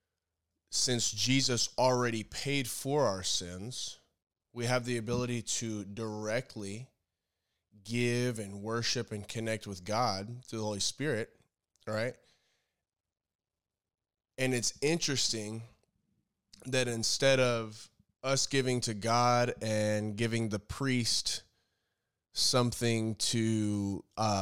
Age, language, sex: 20-39, Japanese, male